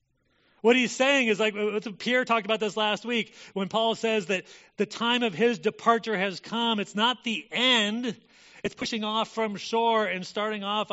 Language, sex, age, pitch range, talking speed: English, male, 40-59, 155-210 Hz, 185 wpm